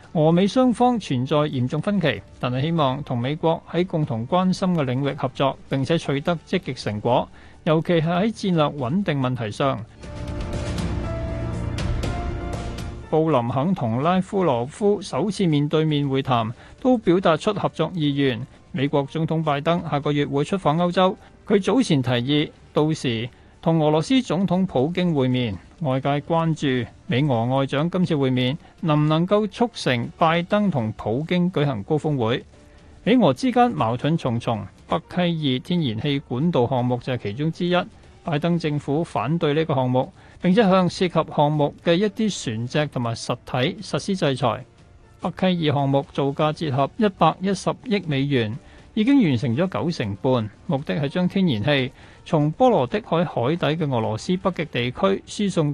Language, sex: Chinese, male